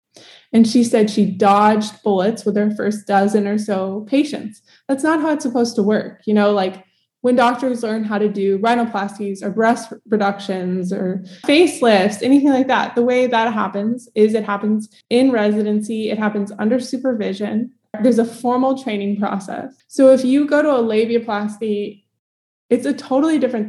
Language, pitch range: English, 205-245 Hz